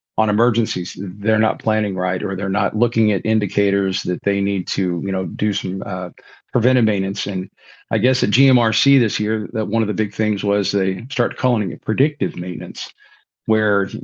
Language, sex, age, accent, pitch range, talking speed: English, male, 50-69, American, 100-120 Hz, 190 wpm